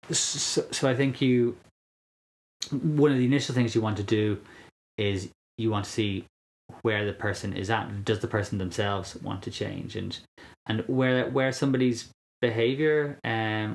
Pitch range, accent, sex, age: 95-115 Hz, Irish, male, 20-39